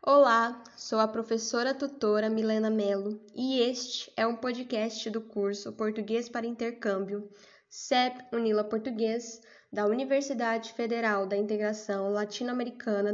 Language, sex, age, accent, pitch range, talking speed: Portuguese, female, 10-29, Brazilian, 210-260 Hz, 120 wpm